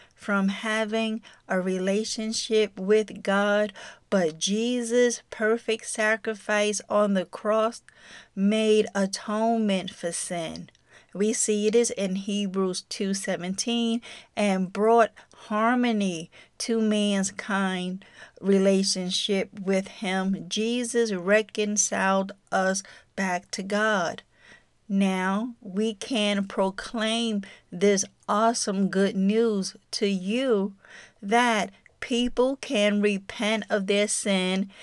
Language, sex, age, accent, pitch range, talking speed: English, female, 40-59, American, 195-220 Hz, 95 wpm